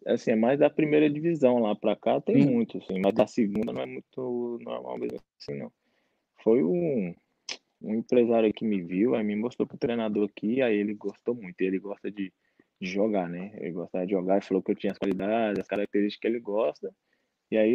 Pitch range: 100-125 Hz